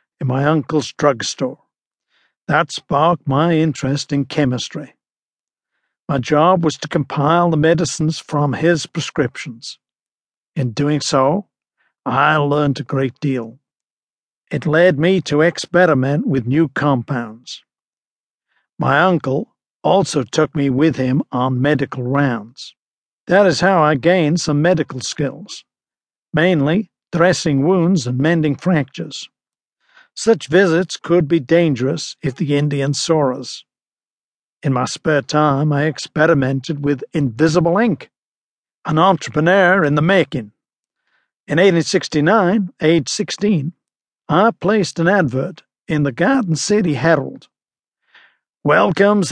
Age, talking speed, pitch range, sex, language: 50-69, 120 wpm, 140-175 Hz, male, English